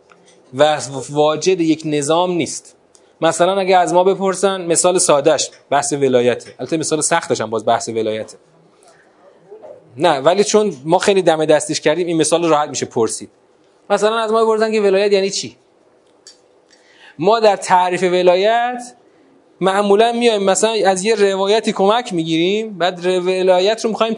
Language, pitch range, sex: Persian, 160-220 Hz, male